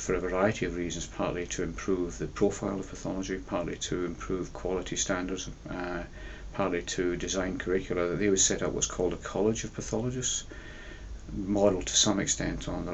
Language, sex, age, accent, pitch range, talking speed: English, male, 40-59, British, 85-95 Hz, 180 wpm